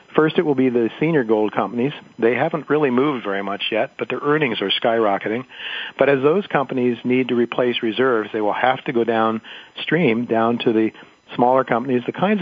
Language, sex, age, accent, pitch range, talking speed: English, male, 50-69, American, 115-135 Hz, 200 wpm